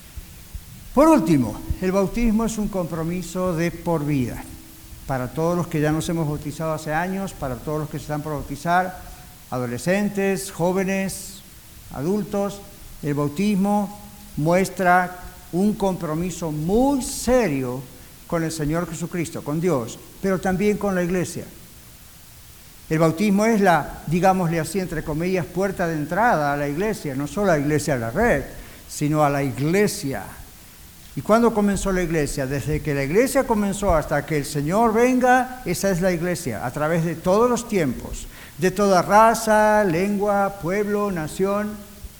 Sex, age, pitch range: male, 60-79, 145-195 Hz